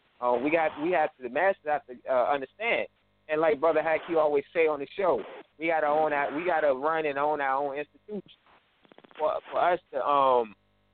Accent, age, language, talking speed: American, 20-39, English, 220 wpm